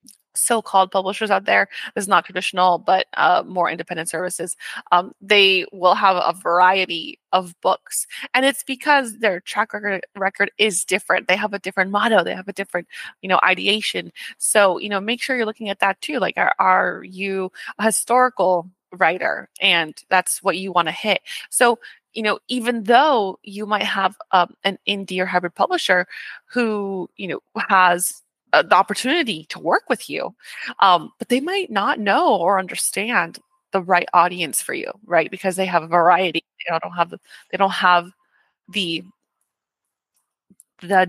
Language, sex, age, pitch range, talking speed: English, female, 20-39, 180-220 Hz, 170 wpm